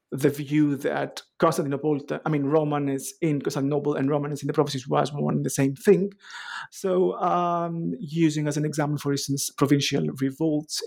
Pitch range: 140-165 Hz